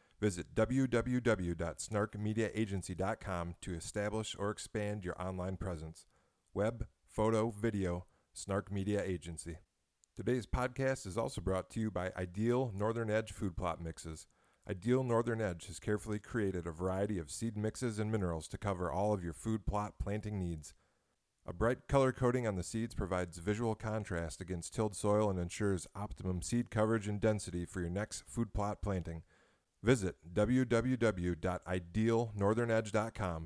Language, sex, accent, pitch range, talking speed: English, male, American, 90-110 Hz, 140 wpm